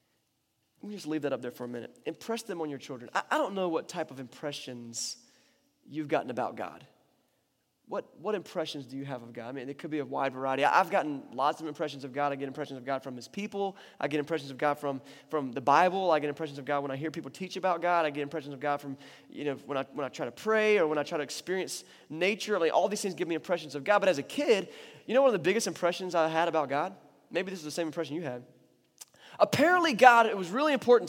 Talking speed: 270 wpm